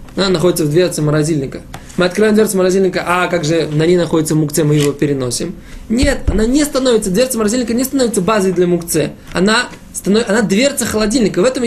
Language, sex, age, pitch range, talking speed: Russian, male, 20-39, 165-220 Hz, 185 wpm